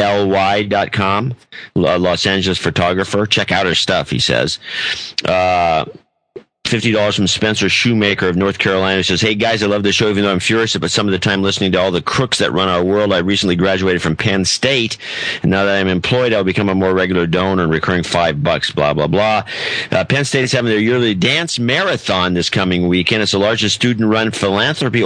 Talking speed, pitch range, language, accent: 210 wpm, 90-110 Hz, English, American